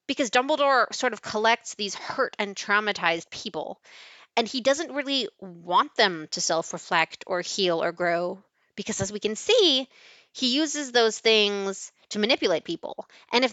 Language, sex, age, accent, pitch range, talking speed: English, female, 20-39, American, 190-240 Hz, 160 wpm